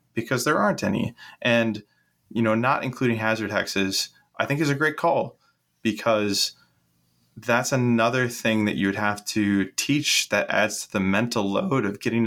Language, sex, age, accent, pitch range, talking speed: English, male, 20-39, American, 100-120 Hz, 165 wpm